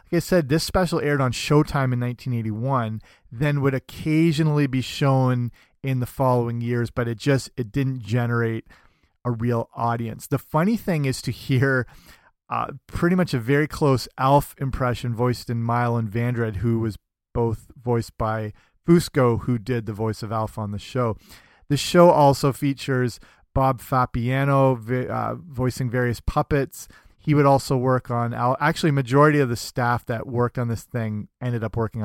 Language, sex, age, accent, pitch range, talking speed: English, male, 30-49, American, 115-140 Hz, 170 wpm